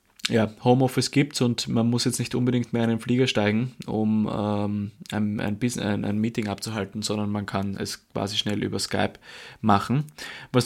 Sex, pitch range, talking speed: male, 110-125 Hz, 180 wpm